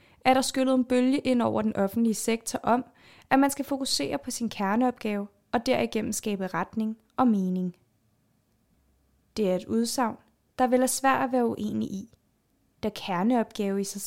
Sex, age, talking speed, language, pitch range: female, 20-39, 170 wpm, Danish, 195-250 Hz